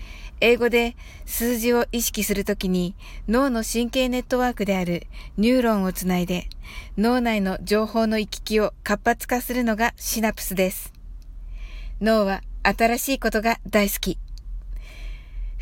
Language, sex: Japanese, female